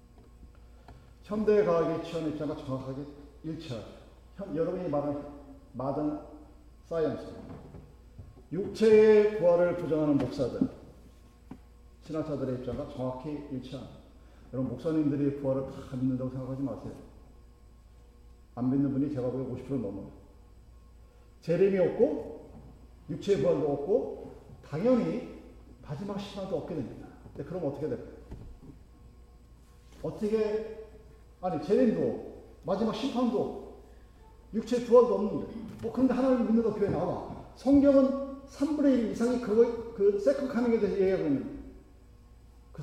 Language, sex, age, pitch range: Korean, male, 40-59, 125-200 Hz